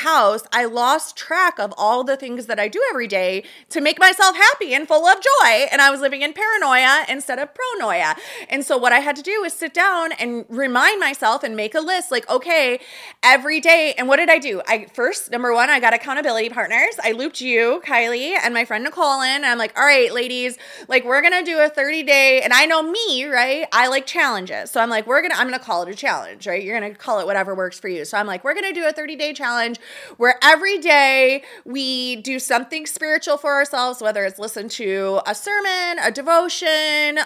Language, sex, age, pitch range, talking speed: English, female, 30-49, 230-310 Hz, 225 wpm